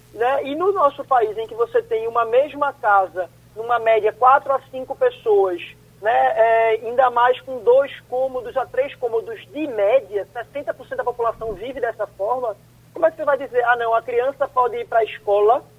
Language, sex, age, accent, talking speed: Portuguese, male, 20-39, Brazilian, 195 wpm